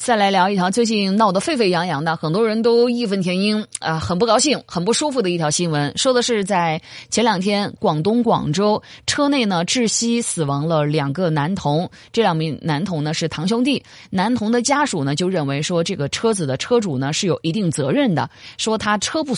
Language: Chinese